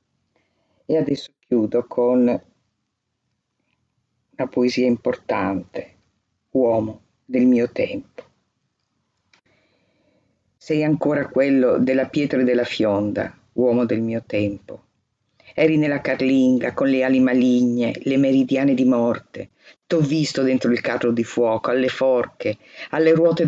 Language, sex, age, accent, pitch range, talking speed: Italian, female, 50-69, native, 120-150 Hz, 115 wpm